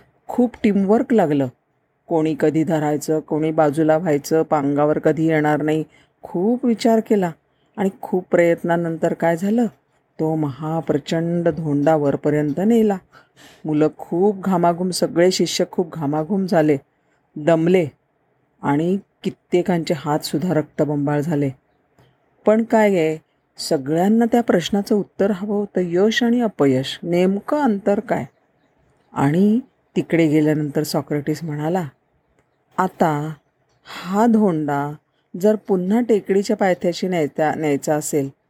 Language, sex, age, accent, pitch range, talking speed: Marathi, female, 40-59, native, 150-200 Hz, 105 wpm